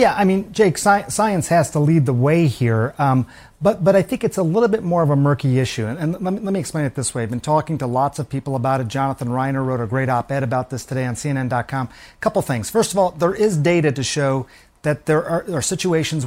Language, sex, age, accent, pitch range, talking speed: English, male, 40-59, American, 135-160 Hz, 265 wpm